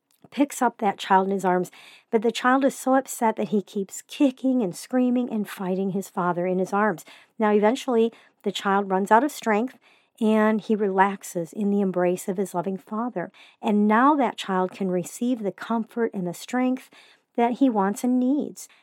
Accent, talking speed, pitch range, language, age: American, 190 wpm, 185-235 Hz, English, 50-69